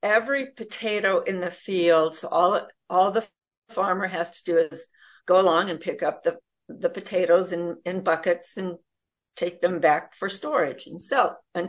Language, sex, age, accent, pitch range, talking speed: English, female, 50-69, American, 170-225 Hz, 175 wpm